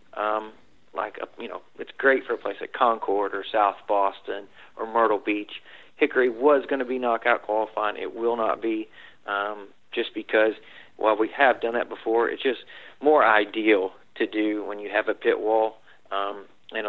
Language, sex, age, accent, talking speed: English, male, 40-59, American, 185 wpm